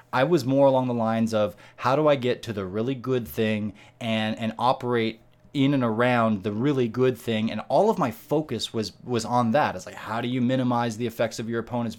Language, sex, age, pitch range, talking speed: English, male, 20-39, 105-130 Hz, 230 wpm